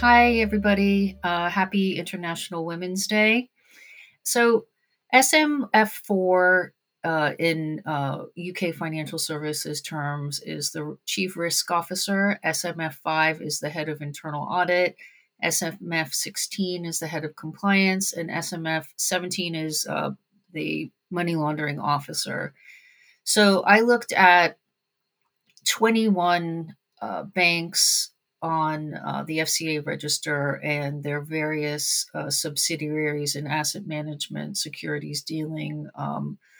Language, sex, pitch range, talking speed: English, female, 150-180 Hz, 105 wpm